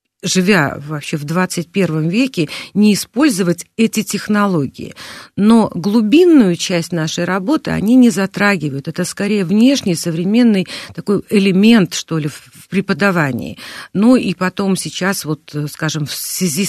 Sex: female